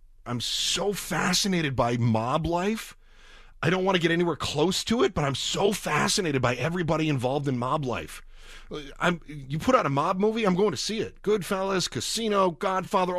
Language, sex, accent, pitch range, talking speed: English, male, American, 120-175 Hz, 180 wpm